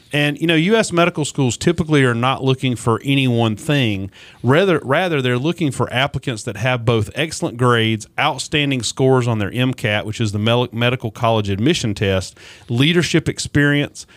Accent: American